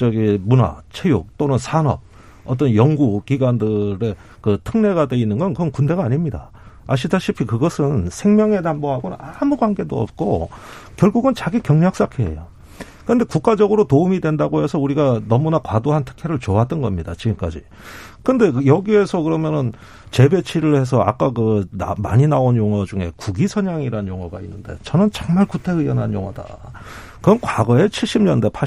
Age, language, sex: 40-59, Korean, male